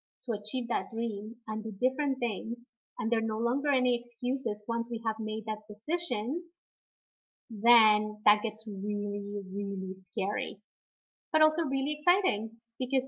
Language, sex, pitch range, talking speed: English, female, 225-275 Hz, 145 wpm